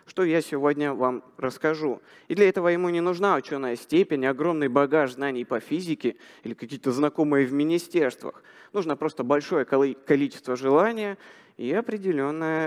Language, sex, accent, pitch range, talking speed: Russian, male, native, 140-200 Hz, 140 wpm